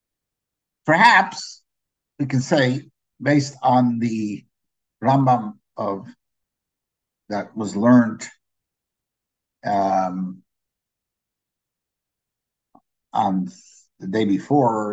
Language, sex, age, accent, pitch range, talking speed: English, male, 60-79, American, 115-145 Hz, 70 wpm